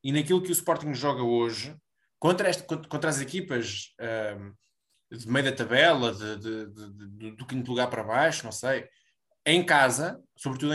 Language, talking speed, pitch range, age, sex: Portuguese, 150 wpm, 125-175 Hz, 20-39, male